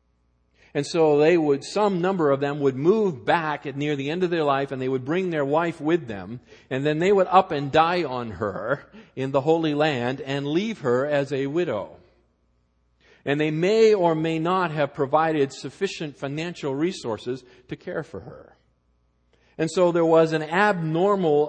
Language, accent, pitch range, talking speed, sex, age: English, American, 125-165 Hz, 185 wpm, male, 50-69